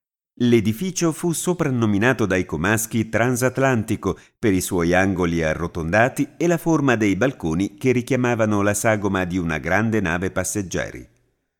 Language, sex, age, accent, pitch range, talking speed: Italian, male, 50-69, native, 95-135 Hz, 130 wpm